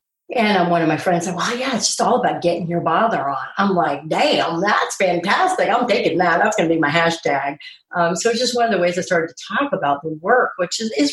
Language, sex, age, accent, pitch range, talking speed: English, female, 40-59, American, 170-235 Hz, 255 wpm